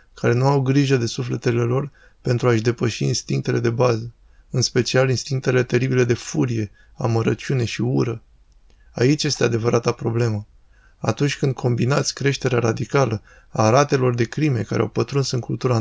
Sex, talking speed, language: male, 150 wpm, Romanian